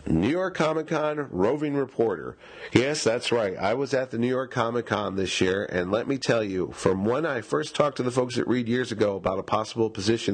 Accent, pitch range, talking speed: American, 105-130 Hz, 230 wpm